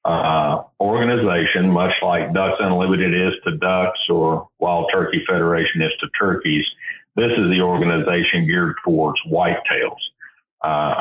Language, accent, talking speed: English, American, 130 wpm